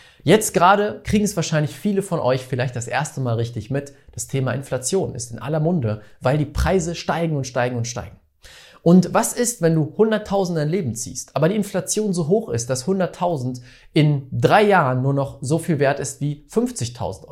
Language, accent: German, German